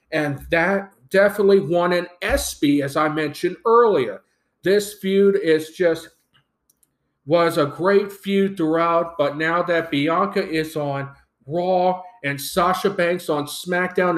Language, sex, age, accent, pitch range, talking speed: English, male, 40-59, American, 155-200 Hz, 130 wpm